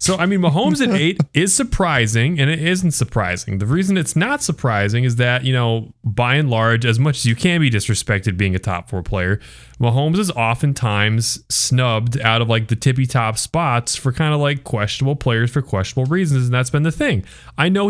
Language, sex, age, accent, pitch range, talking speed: English, male, 30-49, American, 105-135 Hz, 205 wpm